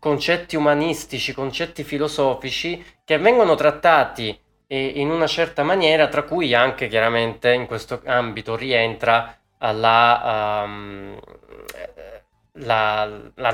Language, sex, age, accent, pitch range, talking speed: Italian, male, 20-39, native, 110-140 Hz, 95 wpm